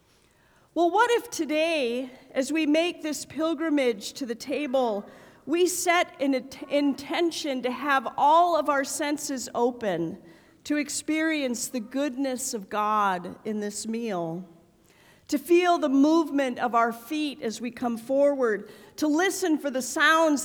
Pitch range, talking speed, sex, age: 235-310 Hz, 140 wpm, female, 40-59